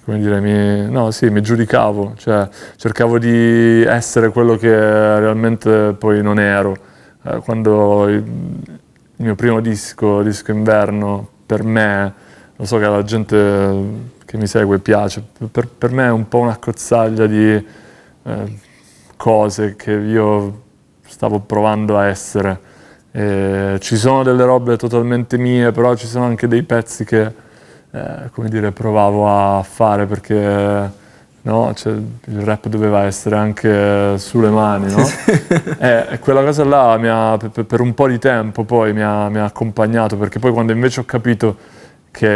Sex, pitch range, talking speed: male, 105-115 Hz, 150 wpm